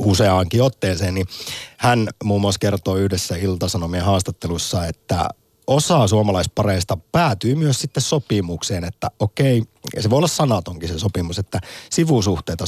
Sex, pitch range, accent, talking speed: male, 95-130 Hz, native, 130 wpm